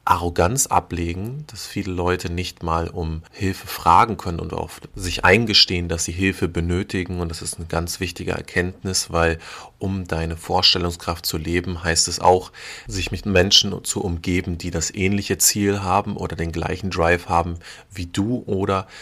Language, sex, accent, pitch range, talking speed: German, male, German, 85-100 Hz, 165 wpm